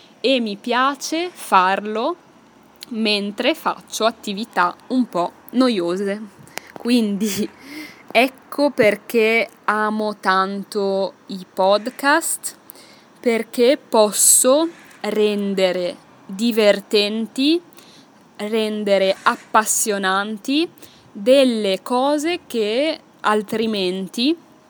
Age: 20-39